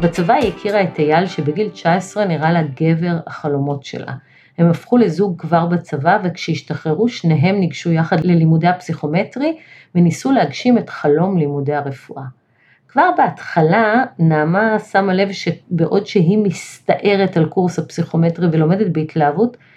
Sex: female